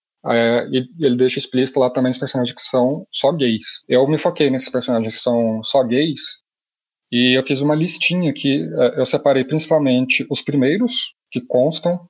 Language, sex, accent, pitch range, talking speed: Portuguese, male, Brazilian, 120-140 Hz, 180 wpm